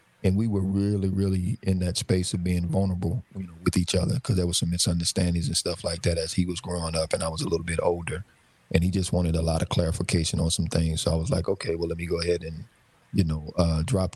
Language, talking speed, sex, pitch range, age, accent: English, 265 wpm, male, 85-100 Hz, 40-59, American